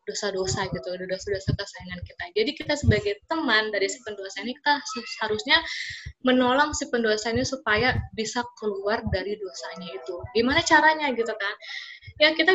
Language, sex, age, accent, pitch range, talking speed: Indonesian, female, 20-39, native, 210-285 Hz, 150 wpm